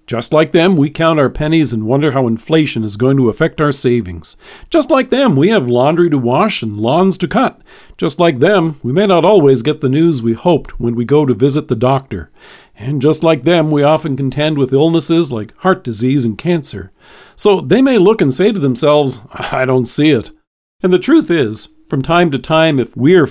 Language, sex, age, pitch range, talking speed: English, male, 50-69, 125-170 Hz, 215 wpm